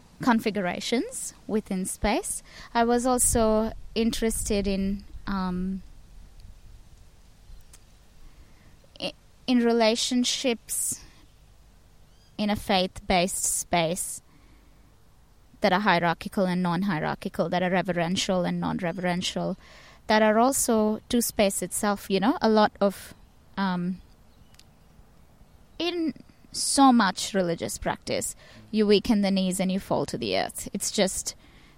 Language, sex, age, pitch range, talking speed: English, female, 20-39, 180-215 Hz, 110 wpm